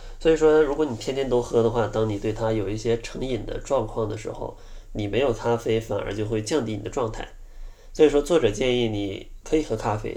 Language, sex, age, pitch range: Chinese, male, 20-39, 105-120 Hz